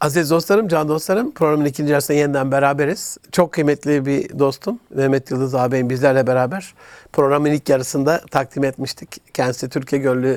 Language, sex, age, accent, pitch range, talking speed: Turkish, male, 60-79, native, 140-180 Hz, 150 wpm